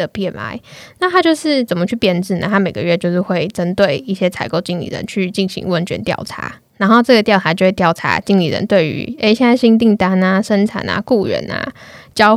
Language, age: Chinese, 10-29